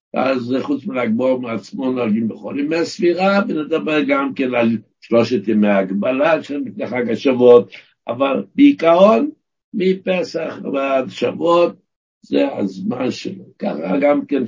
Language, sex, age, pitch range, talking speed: Hebrew, male, 60-79, 115-170 Hz, 120 wpm